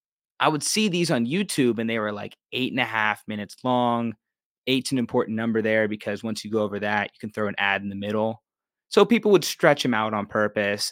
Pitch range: 110-130 Hz